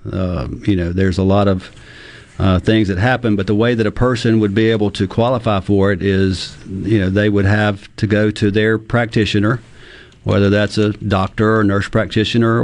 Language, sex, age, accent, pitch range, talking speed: English, male, 50-69, American, 95-110 Hz, 200 wpm